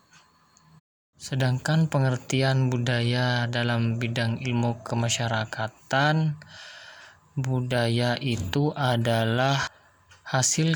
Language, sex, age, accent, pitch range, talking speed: Indonesian, male, 20-39, native, 120-145 Hz, 60 wpm